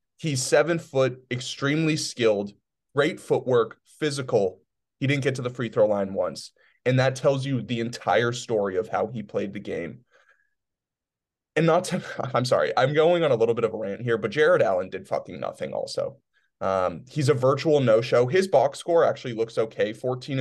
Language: English